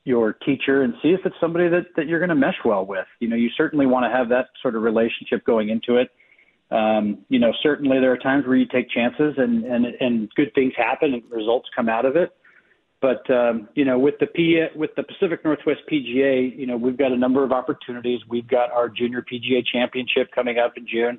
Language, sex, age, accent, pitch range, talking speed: English, male, 40-59, American, 115-130 Hz, 230 wpm